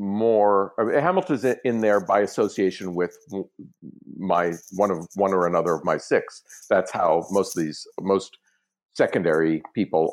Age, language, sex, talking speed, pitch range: 50-69, English, male, 140 wpm, 90-125 Hz